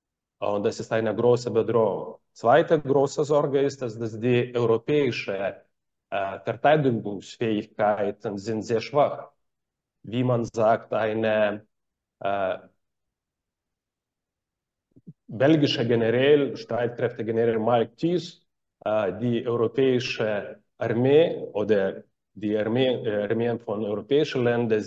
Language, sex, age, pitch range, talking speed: German, male, 40-59, 110-130 Hz, 95 wpm